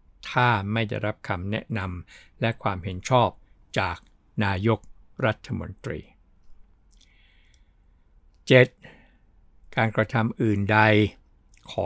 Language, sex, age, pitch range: Thai, male, 60-79, 90-115 Hz